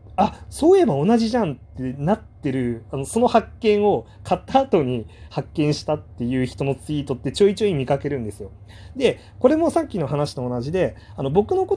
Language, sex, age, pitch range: Japanese, male, 30-49, 125-200 Hz